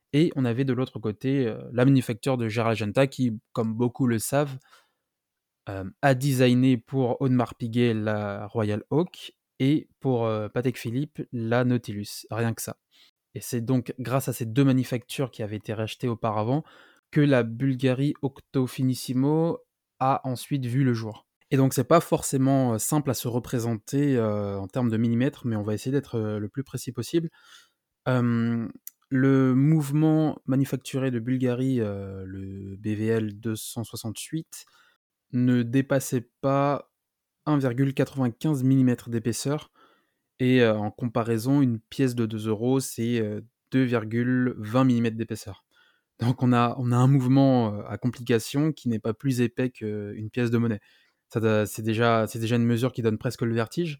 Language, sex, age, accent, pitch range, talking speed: French, male, 20-39, French, 115-135 Hz, 150 wpm